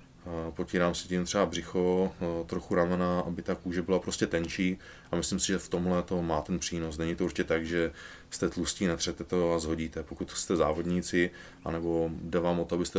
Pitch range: 85-90 Hz